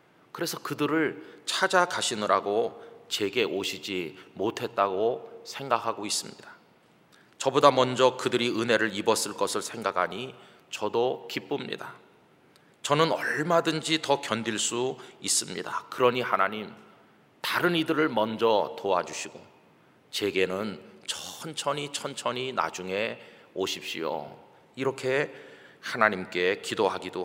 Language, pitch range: Korean, 120-160 Hz